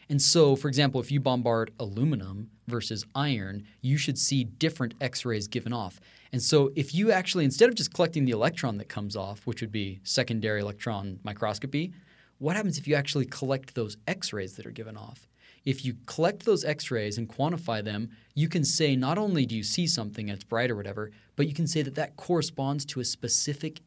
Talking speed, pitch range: 205 wpm, 115-155 Hz